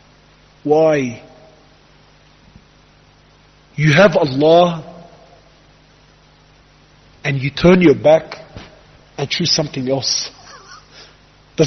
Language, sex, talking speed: Malay, male, 70 wpm